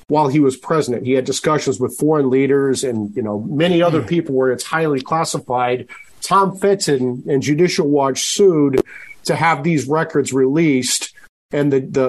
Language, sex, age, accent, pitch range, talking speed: English, male, 40-59, American, 135-160 Hz, 165 wpm